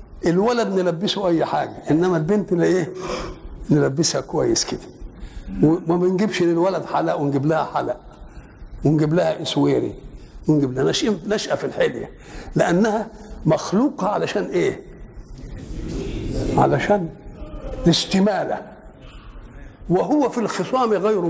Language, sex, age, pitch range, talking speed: Arabic, male, 60-79, 145-195 Hz, 100 wpm